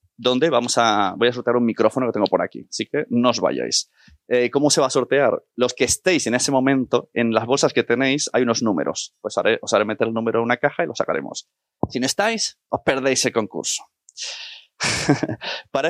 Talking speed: 220 wpm